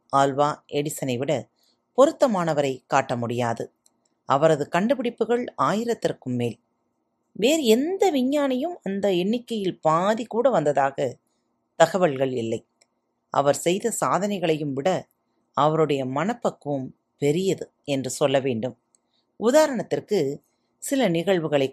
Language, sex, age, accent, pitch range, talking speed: Tamil, female, 30-49, native, 130-210 Hz, 90 wpm